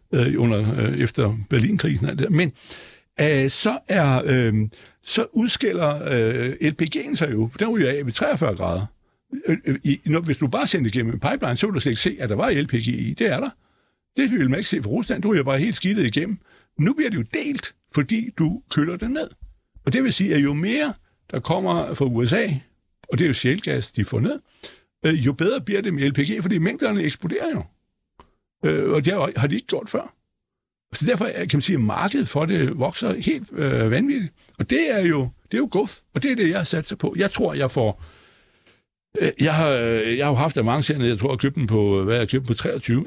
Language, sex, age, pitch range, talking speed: Danish, male, 60-79, 115-180 Hz, 225 wpm